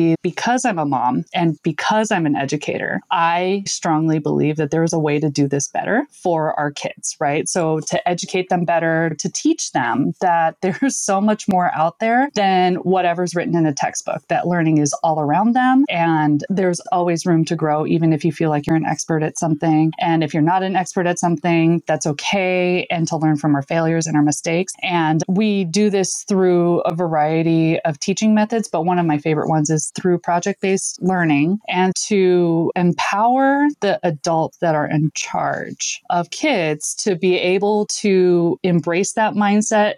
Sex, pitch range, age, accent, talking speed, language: female, 160-210 Hz, 20-39, American, 190 wpm, English